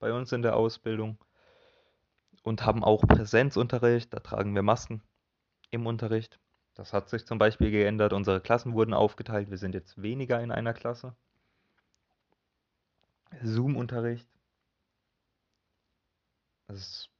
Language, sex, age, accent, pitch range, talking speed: German, male, 30-49, German, 100-120 Hz, 120 wpm